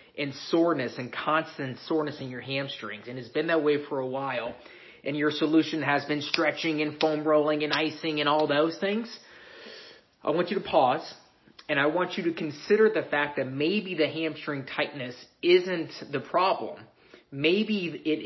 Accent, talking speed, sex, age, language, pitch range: American, 180 wpm, male, 30-49, English, 140-175 Hz